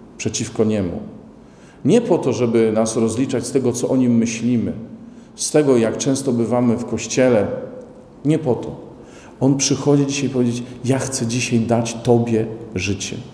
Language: Polish